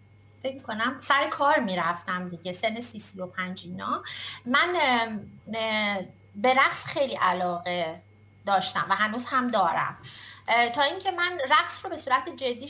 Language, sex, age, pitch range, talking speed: Persian, female, 30-49, 200-280 Hz, 135 wpm